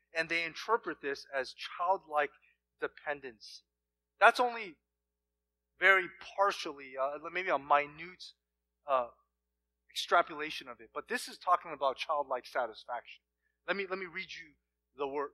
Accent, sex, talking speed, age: American, male, 135 wpm, 30-49